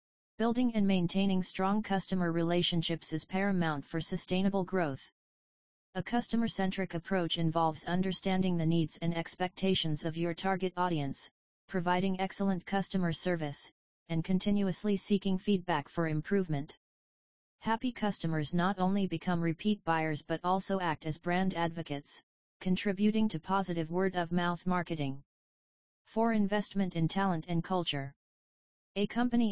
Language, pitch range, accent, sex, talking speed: English, 165-195 Hz, American, female, 120 wpm